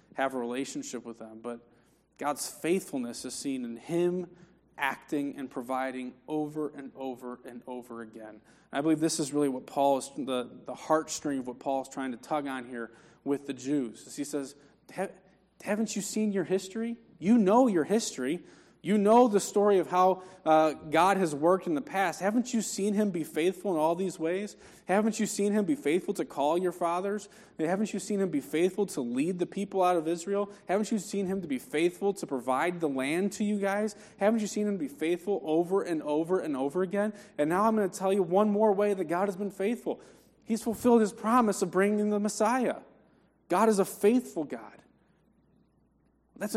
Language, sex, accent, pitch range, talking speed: English, male, American, 140-205 Hz, 205 wpm